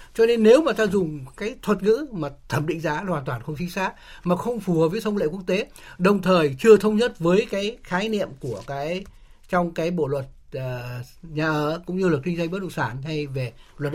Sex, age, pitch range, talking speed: male, 60-79, 155-205 Hz, 245 wpm